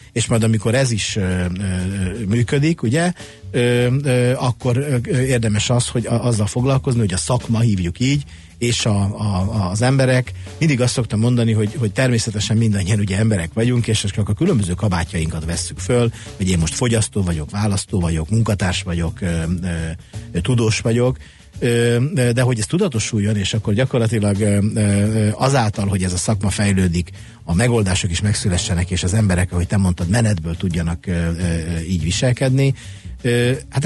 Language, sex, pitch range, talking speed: Hungarian, male, 90-120 Hz, 150 wpm